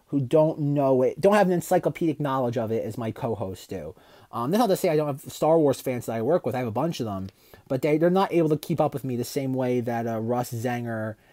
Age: 30-49